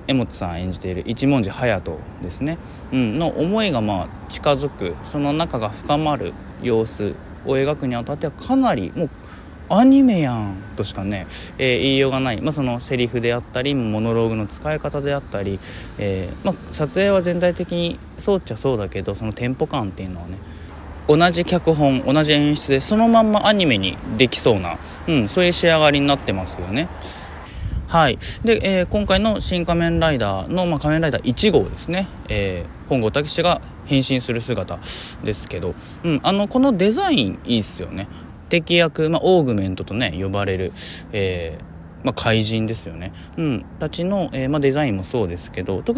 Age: 20-39